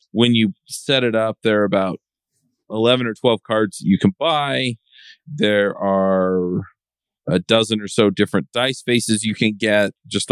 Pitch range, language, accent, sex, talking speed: 95-110 Hz, English, American, male, 165 wpm